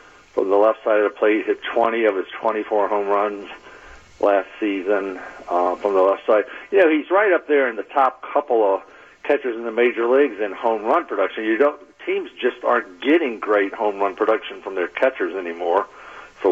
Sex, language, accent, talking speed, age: male, English, American, 205 wpm, 50-69